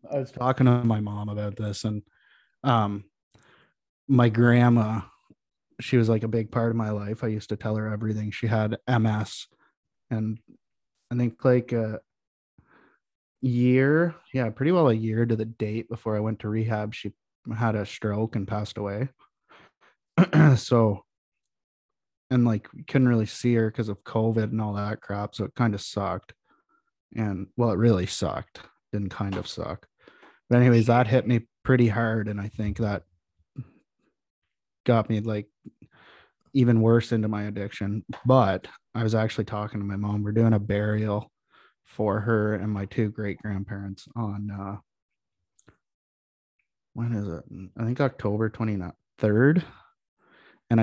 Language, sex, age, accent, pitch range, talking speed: English, male, 20-39, American, 105-120 Hz, 155 wpm